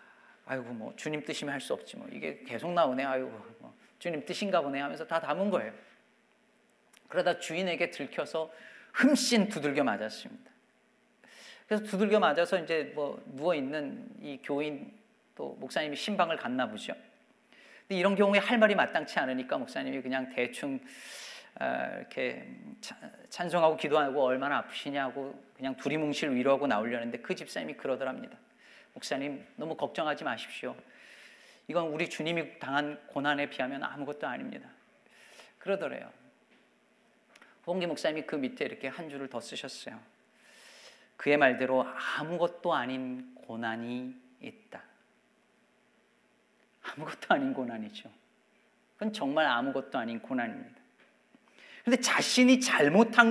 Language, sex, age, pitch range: Korean, male, 40-59, 140-225 Hz